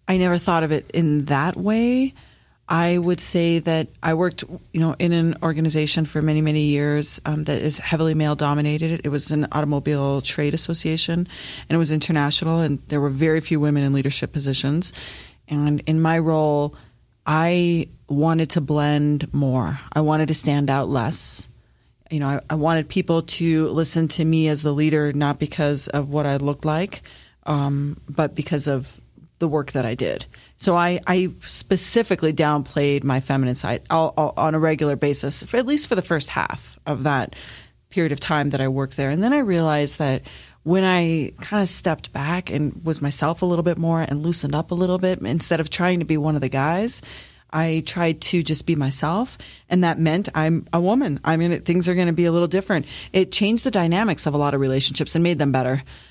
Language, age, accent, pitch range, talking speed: English, 30-49, American, 145-170 Hz, 200 wpm